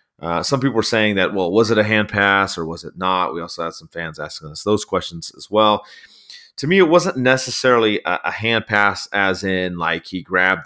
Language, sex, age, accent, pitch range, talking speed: English, male, 30-49, American, 95-115 Hz, 230 wpm